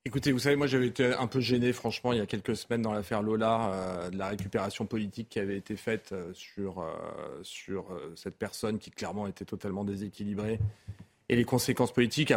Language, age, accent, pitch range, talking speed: French, 30-49, French, 100-125 Hz, 205 wpm